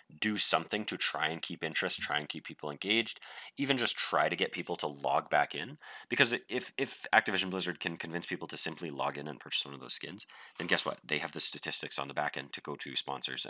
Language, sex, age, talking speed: English, male, 30-49, 245 wpm